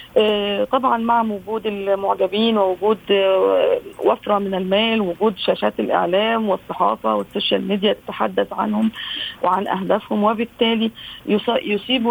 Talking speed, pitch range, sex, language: 100 wpm, 180-225 Hz, female, Arabic